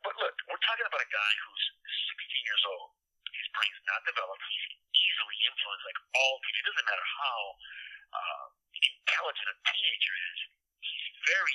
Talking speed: 165 wpm